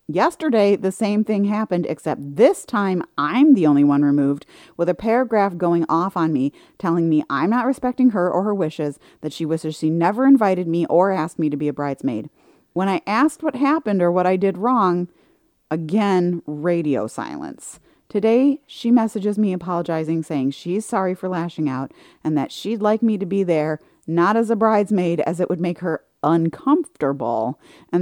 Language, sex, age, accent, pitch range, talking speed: English, female, 30-49, American, 155-205 Hz, 185 wpm